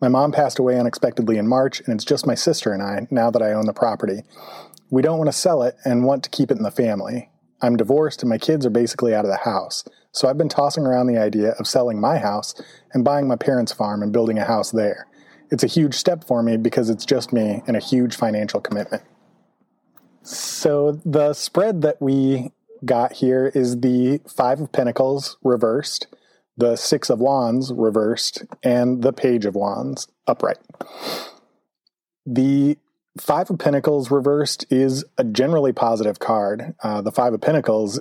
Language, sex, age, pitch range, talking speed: English, male, 30-49, 115-145 Hz, 190 wpm